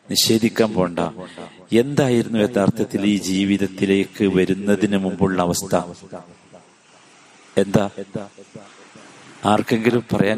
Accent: native